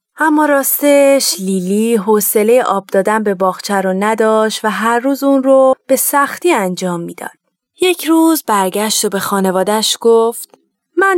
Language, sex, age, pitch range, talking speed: Persian, female, 30-49, 190-265 Hz, 145 wpm